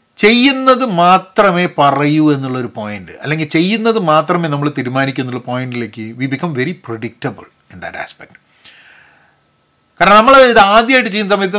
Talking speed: 125 wpm